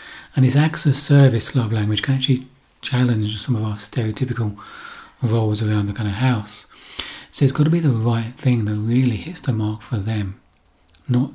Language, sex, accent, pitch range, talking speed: English, male, British, 110-130 Hz, 190 wpm